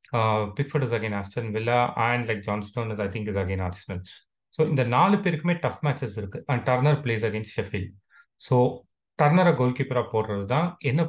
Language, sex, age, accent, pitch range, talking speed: Tamil, male, 30-49, native, 115-145 Hz, 175 wpm